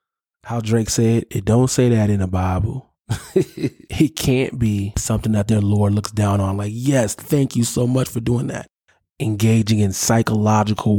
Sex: male